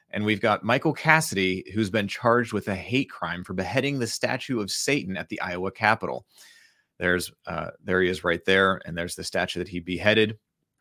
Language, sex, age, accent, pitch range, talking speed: English, male, 30-49, American, 95-120 Hz, 195 wpm